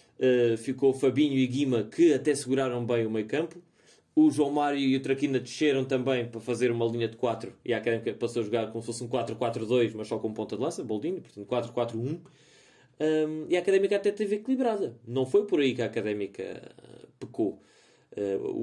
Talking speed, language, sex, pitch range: 205 wpm, Portuguese, male, 115-145 Hz